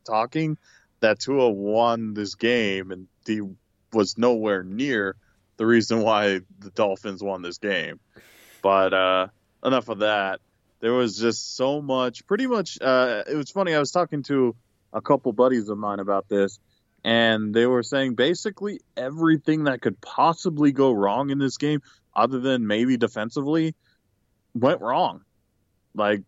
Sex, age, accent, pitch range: male, 20-39, American, 105-135 Hz